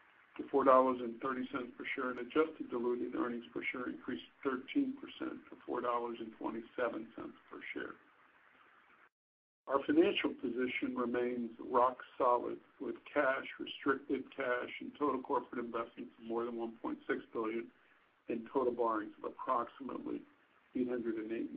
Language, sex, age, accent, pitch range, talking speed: English, male, 50-69, American, 115-155 Hz, 115 wpm